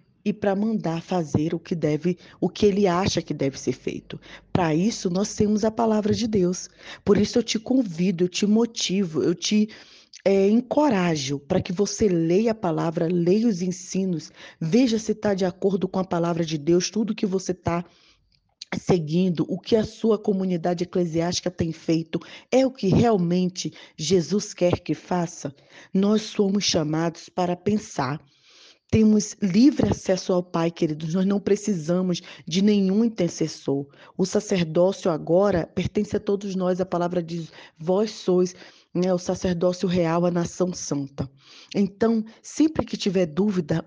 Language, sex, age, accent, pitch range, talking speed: Portuguese, female, 20-39, Brazilian, 170-210 Hz, 155 wpm